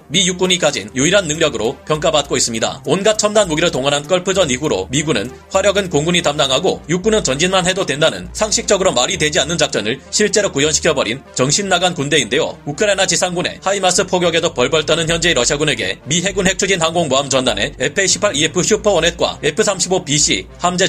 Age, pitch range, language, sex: 30-49, 145-190 Hz, Korean, male